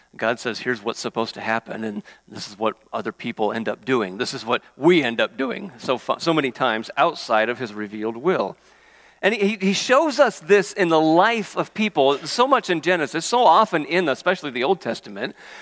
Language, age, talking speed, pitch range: English, 50-69, 210 wpm, 130-190 Hz